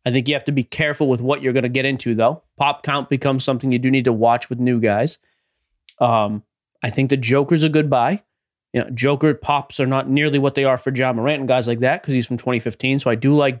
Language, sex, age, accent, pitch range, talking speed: English, male, 30-49, American, 120-150 Hz, 265 wpm